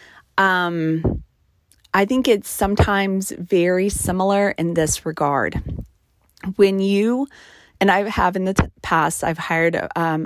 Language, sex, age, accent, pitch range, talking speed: English, female, 30-49, American, 160-200 Hz, 130 wpm